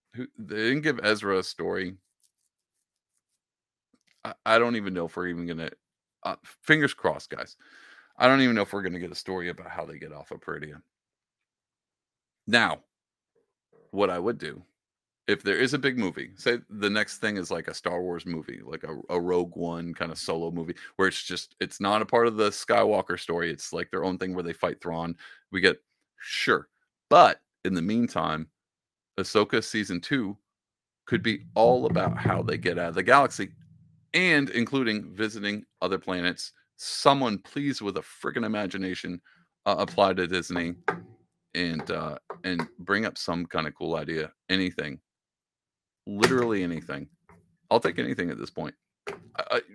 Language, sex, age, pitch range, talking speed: English, male, 30-49, 85-110 Hz, 175 wpm